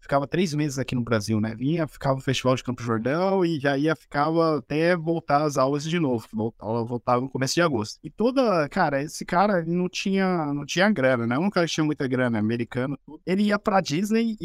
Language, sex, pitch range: Portuguese, male, 135-185 Hz